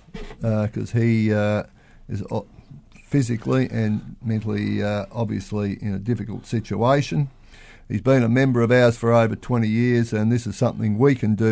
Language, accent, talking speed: English, Australian, 160 wpm